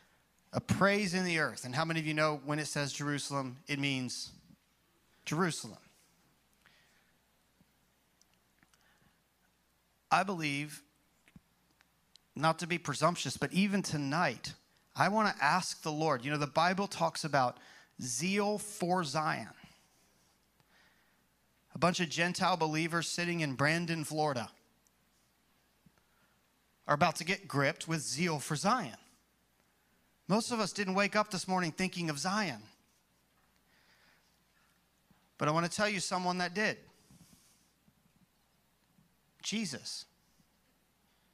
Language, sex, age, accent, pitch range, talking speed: English, male, 30-49, American, 145-180 Hz, 120 wpm